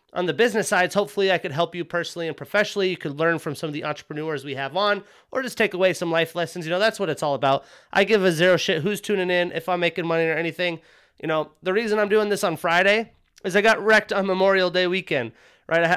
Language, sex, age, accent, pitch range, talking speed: English, male, 30-49, American, 170-205 Hz, 260 wpm